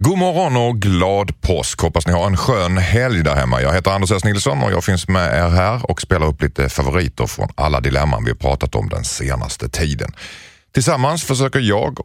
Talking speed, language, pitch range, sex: 210 wpm, Swedish, 85-125 Hz, male